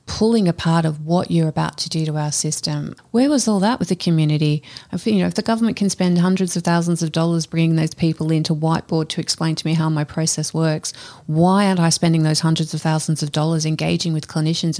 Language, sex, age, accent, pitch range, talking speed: English, female, 30-49, Australian, 160-180 Hz, 235 wpm